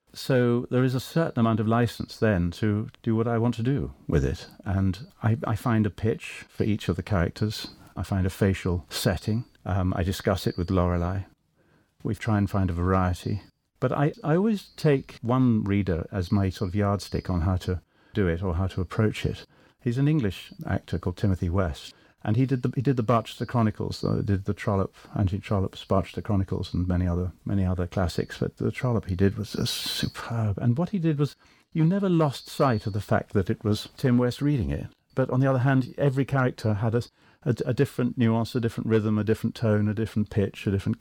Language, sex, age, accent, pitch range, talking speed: English, male, 50-69, British, 95-125 Hz, 220 wpm